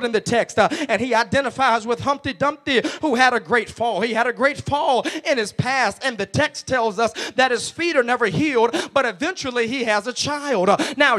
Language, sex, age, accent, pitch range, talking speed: English, male, 20-39, American, 245-310 Hz, 220 wpm